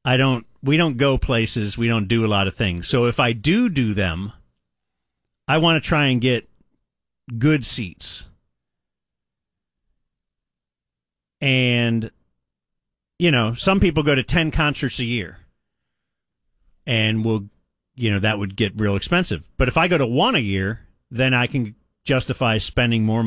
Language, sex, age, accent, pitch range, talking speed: English, male, 40-59, American, 105-140 Hz, 155 wpm